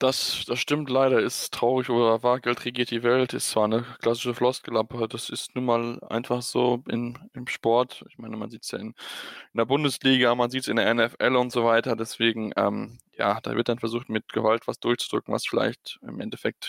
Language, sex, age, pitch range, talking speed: German, male, 10-29, 120-135 Hz, 210 wpm